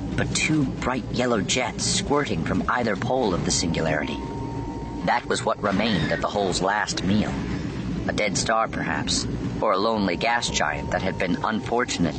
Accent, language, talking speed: American, English, 165 wpm